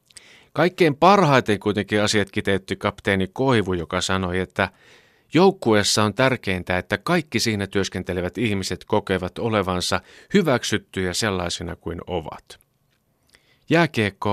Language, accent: Finnish, native